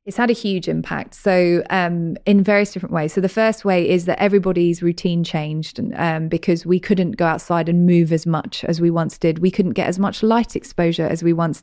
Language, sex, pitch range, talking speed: English, female, 170-215 Hz, 225 wpm